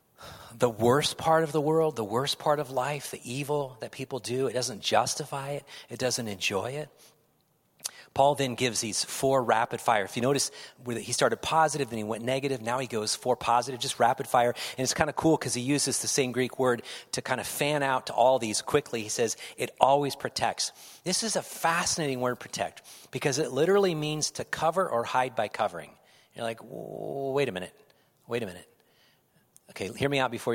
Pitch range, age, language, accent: 115-150 Hz, 40-59, English, American